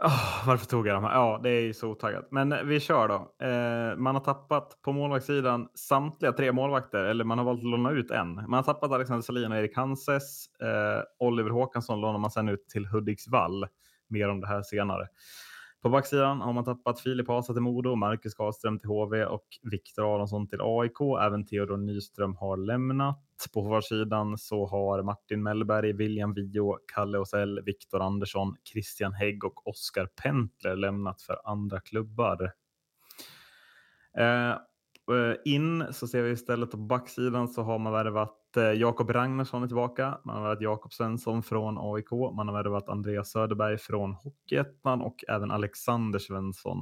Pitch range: 105-125 Hz